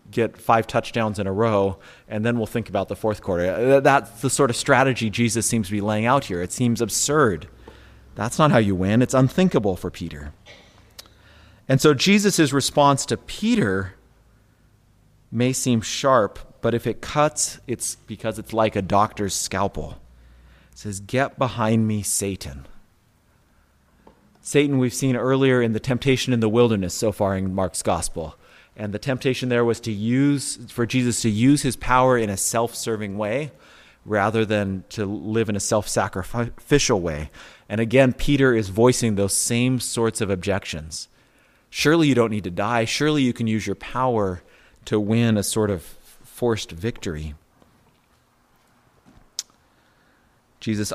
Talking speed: 160 wpm